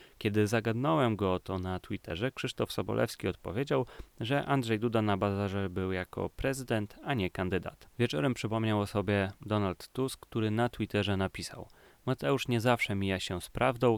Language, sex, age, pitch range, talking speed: Polish, male, 30-49, 100-120 Hz, 165 wpm